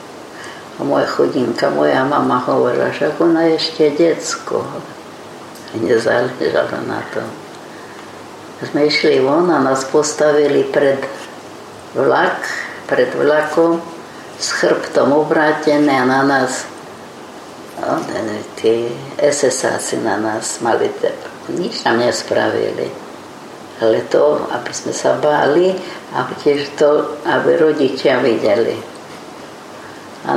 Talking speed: 105 wpm